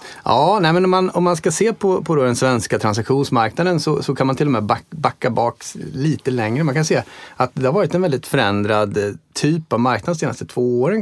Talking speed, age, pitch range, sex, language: 225 wpm, 30-49, 110-145 Hz, male, Swedish